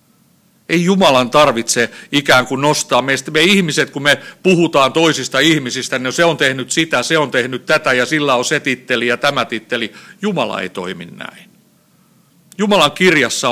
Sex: male